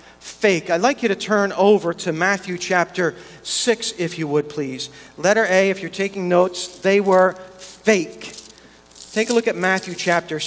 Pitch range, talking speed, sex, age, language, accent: 155-225 Hz, 170 wpm, male, 50-69, English, American